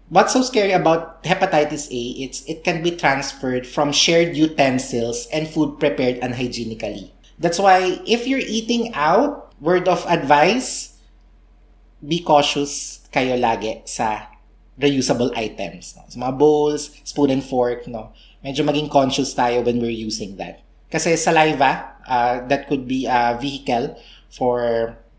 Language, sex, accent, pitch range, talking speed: English, male, Filipino, 125-175 Hz, 140 wpm